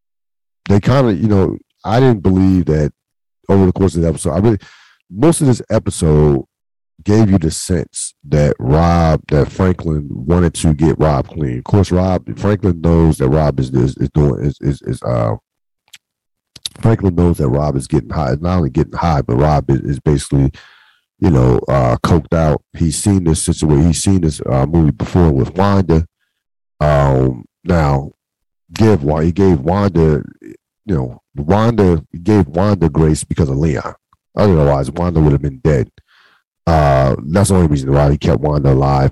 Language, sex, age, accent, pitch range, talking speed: English, male, 50-69, American, 75-95 Hz, 175 wpm